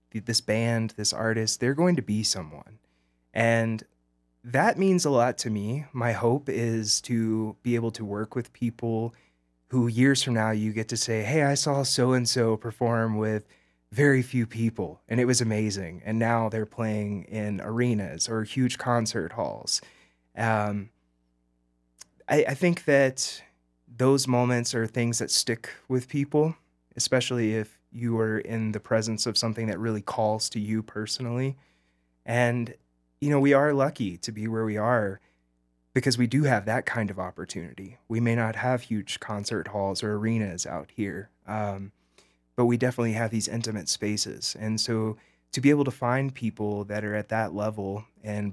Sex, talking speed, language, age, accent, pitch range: male, 170 wpm, English, 20-39, American, 100-120 Hz